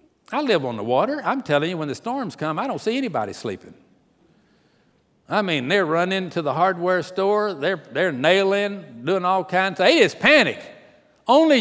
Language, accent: English, American